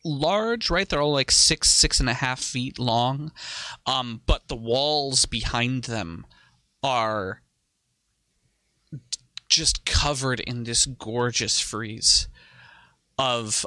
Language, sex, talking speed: English, male, 115 wpm